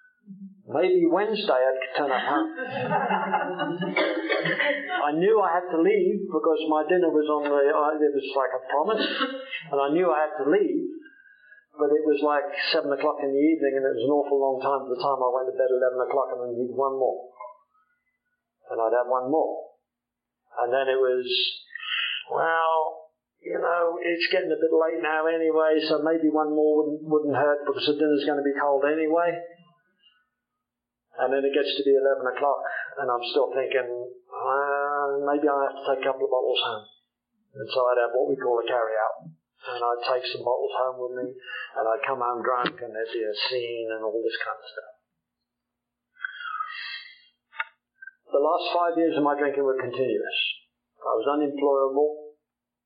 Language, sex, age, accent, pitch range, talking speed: English, male, 50-69, British, 130-175 Hz, 185 wpm